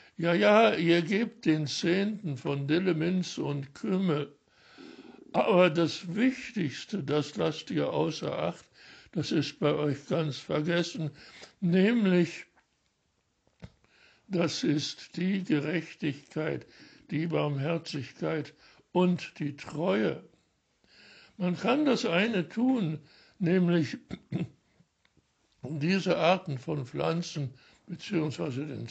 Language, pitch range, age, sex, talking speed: German, 150-180 Hz, 60-79, male, 95 wpm